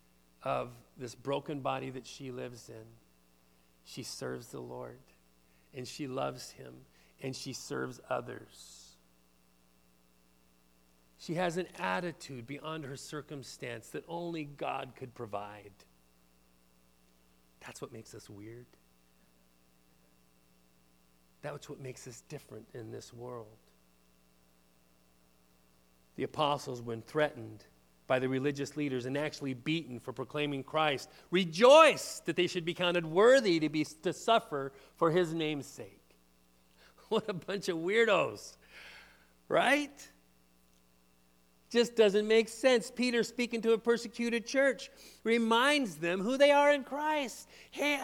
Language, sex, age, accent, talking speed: English, male, 40-59, American, 120 wpm